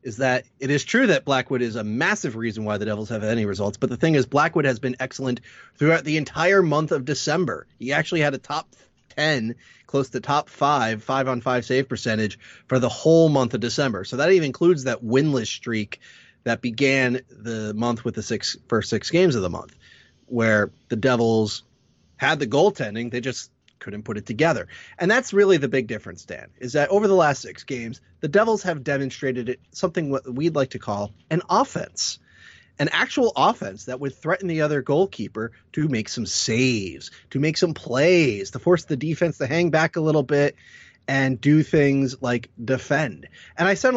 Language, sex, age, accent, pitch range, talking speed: English, male, 30-49, American, 120-160 Hz, 200 wpm